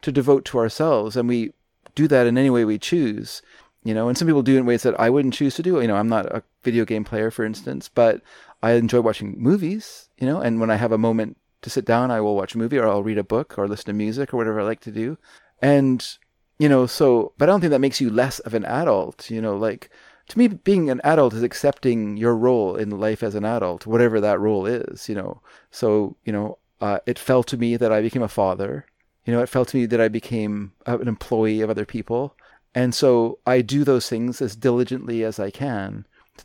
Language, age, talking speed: English, 30-49, 245 wpm